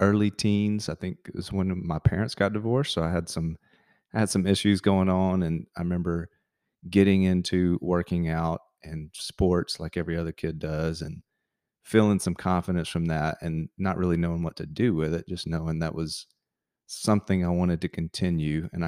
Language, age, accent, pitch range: English, 30-49, American, 80-95 Hz